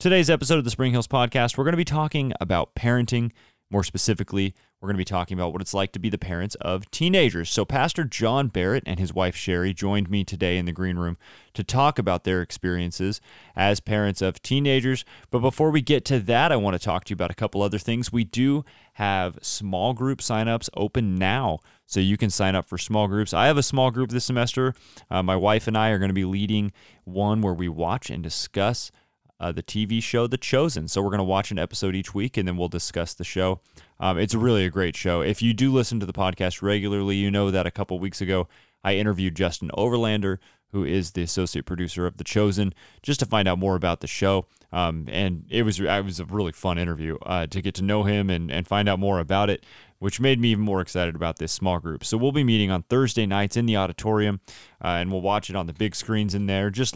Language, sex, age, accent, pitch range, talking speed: English, male, 30-49, American, 90-115 Hz, 240 wpm